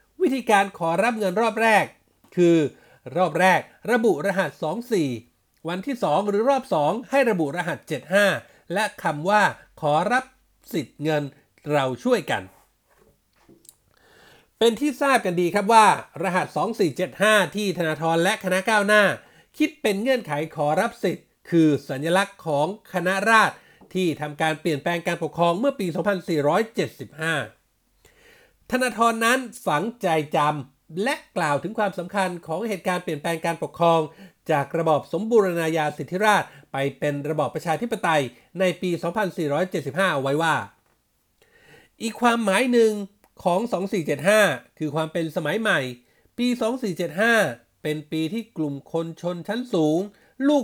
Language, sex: Thai, male